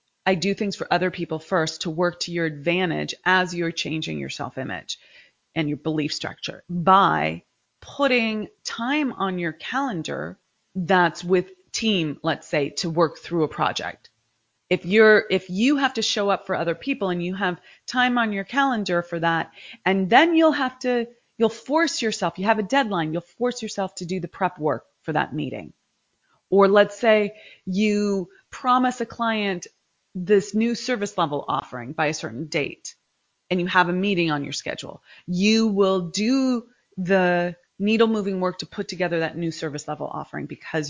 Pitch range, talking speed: 170-220 Hz, 175 wpm